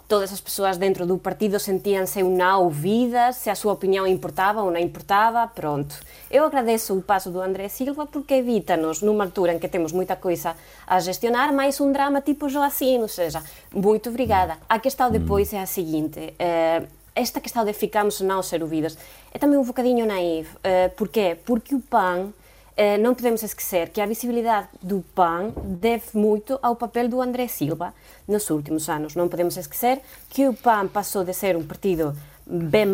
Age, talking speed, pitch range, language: 20-39, 185 wpm, 180-240 Hz, Portuguese